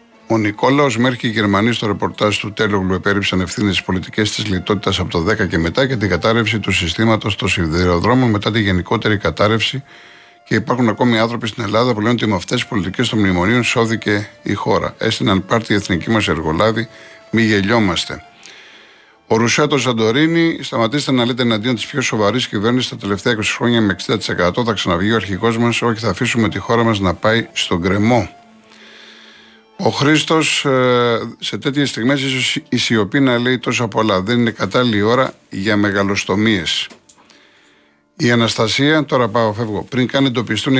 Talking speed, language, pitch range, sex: 170 wpm, Greek, 100-125 Hz, male